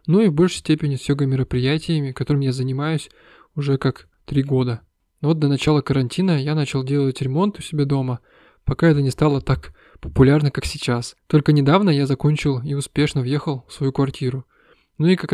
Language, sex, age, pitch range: Russian, male, 20-39, 135-165 Hz